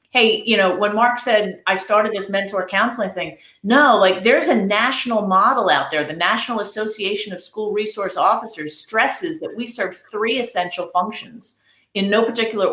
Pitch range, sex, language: 195-255 Hz, female, English